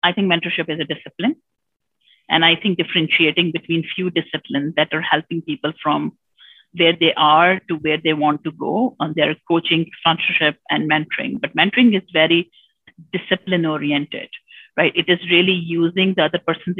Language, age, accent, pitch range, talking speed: English, 50-69, Indian, 160-190 Hz, 170 wpm